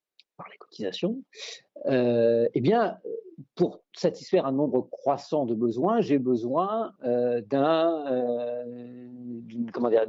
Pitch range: 120-180 Hz